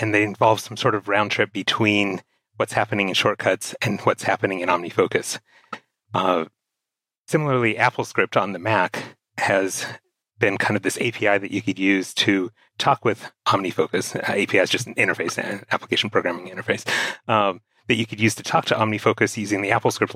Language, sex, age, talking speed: English, male, 30-49, 180 wpm